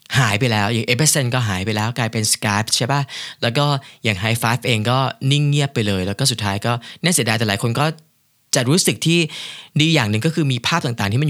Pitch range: 110-145 Hz